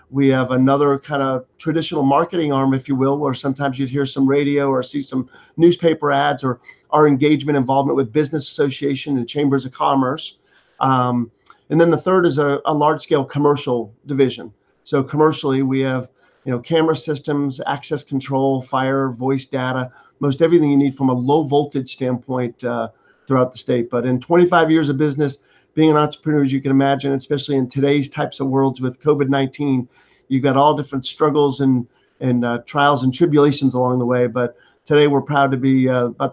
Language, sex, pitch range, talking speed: English, male, 130-145 Hz, 190 wpm